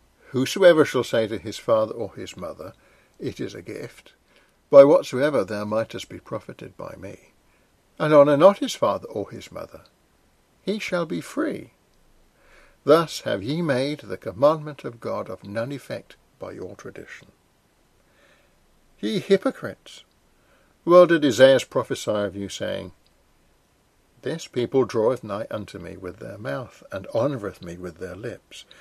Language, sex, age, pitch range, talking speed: English, male, 60-79, 100-160 Hz, 150 wpm